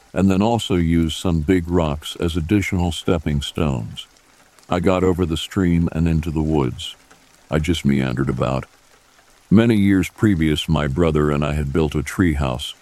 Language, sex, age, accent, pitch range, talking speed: English, male, 60-79, American, 75-90 Hz, 170 wpm